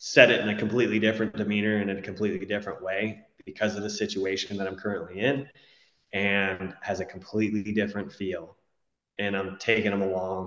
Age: 20-39